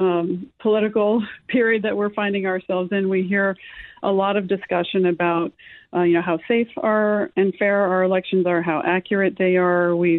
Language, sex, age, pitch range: English, female, 40-59, 175-205 Hz